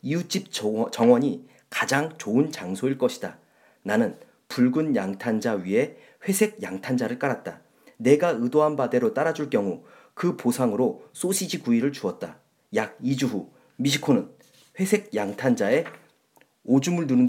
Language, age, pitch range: Korean, 40-59, 130-195 Hz